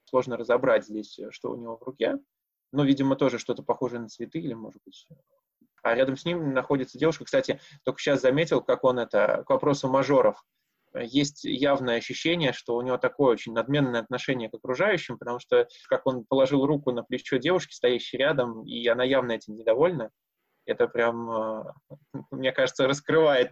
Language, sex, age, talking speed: Russian, male, 20-39, 175 wpm